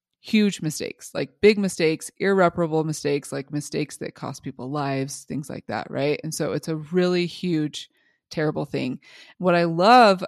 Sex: female